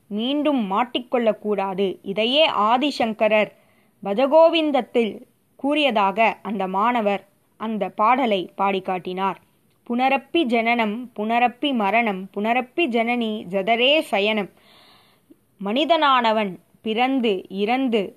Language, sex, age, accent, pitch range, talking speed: Tamil, female, 20-39, native, 205-265 Hz, 75 wpm